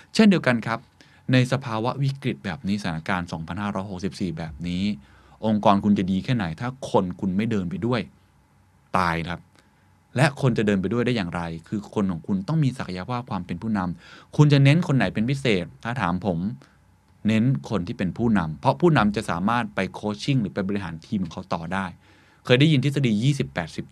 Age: 20-39